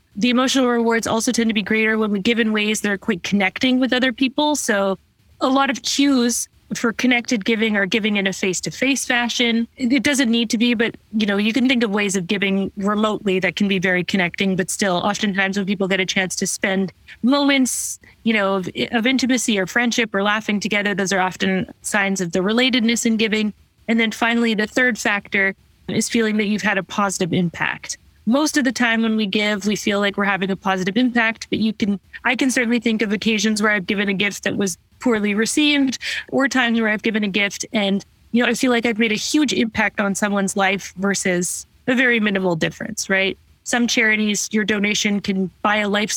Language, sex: English, female